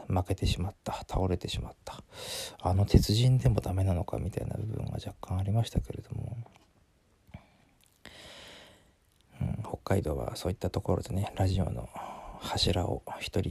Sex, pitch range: male, 95-110 Hz